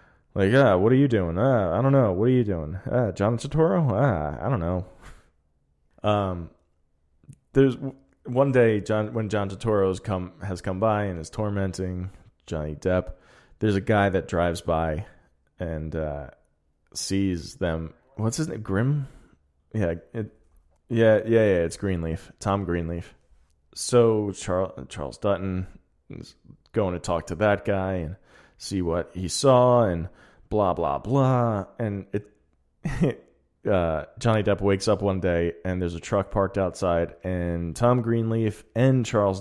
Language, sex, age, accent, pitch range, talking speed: English, male, 20-39, American, 85-110 Hz, 160 wpm